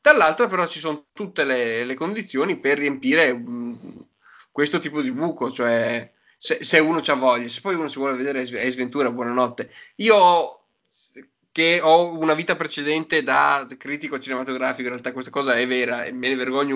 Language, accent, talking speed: Italian, native, 175 wpm